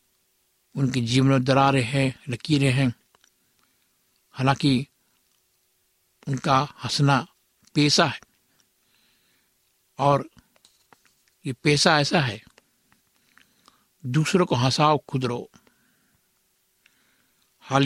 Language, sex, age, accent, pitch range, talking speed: Hindi, male, 60-79, native, 125-145 Hz, 75 wpm